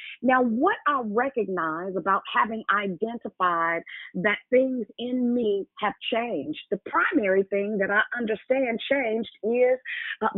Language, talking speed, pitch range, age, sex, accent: English, 125 wpm, 195-260 Hz, 40-59, female, American